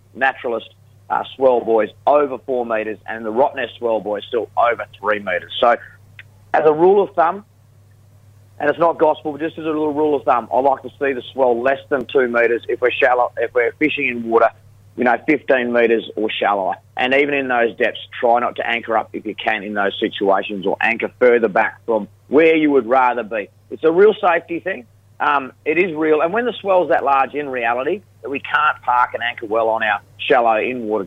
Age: 30-49